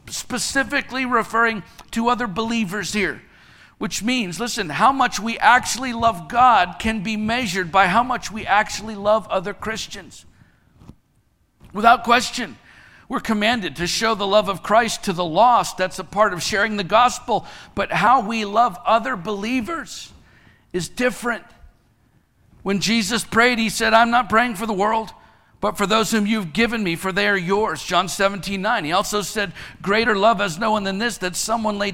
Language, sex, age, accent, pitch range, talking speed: English, male, 50-69, American, 185-225 Hz, 170 wpm